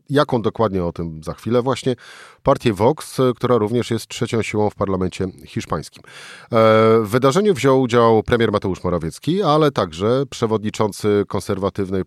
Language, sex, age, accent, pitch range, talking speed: Polish, male, 30-49, native, 90-115 Hz, 140 wpm